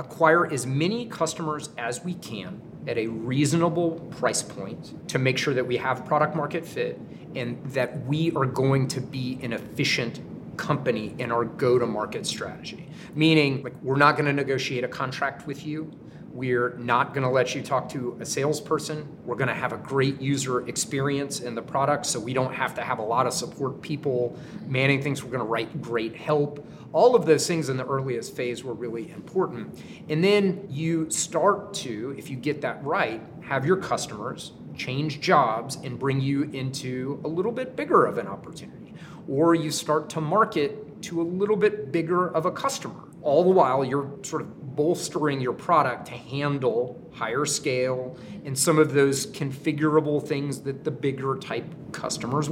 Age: 30-49